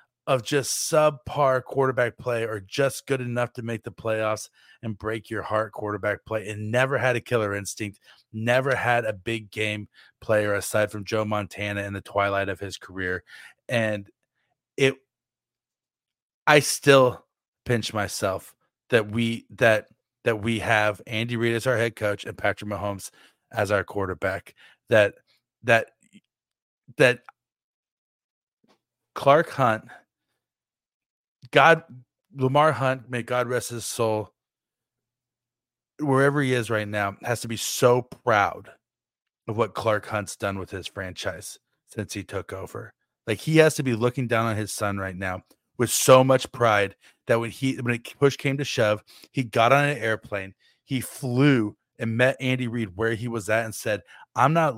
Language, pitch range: English, 105-130 Hz